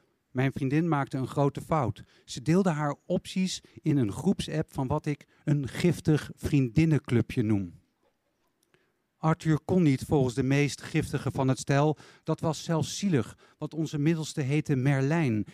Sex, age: male, 50-69